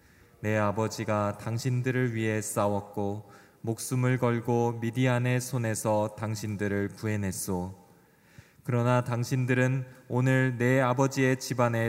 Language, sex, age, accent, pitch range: Korean, male, 20-39, native, 110-130 Hz